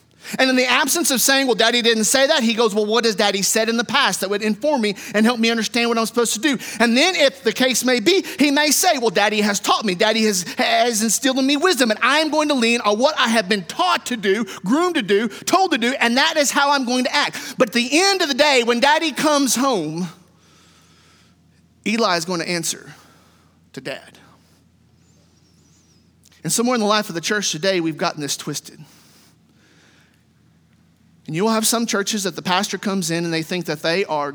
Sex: male